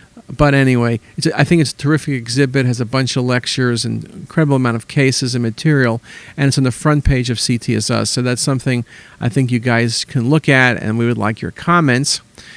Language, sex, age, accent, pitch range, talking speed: English, male, 50-69, American, 120-140 Hz, 225 wpm